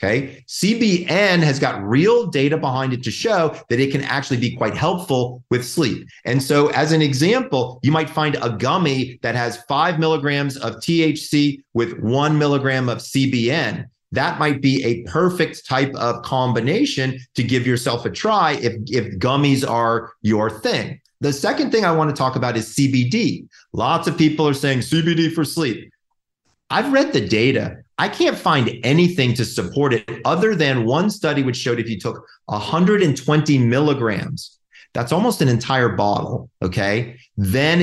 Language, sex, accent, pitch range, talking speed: English, male, American, 120-155 Hz, 165 wpm